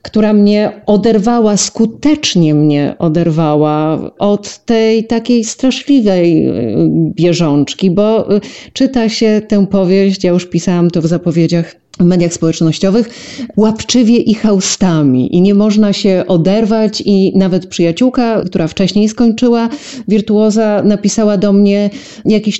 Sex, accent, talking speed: female, native, 115 wpm